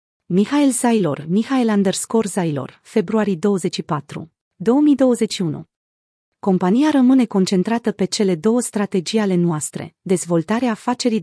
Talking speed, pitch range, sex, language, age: 95 wpm, 180-235 Hz, female, Romanian, 30-49